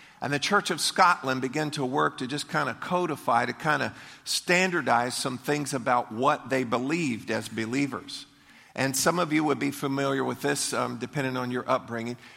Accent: American